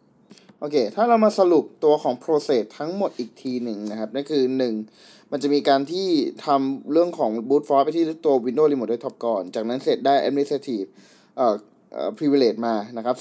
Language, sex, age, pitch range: Thai, male, 20-39, 130-160 Hz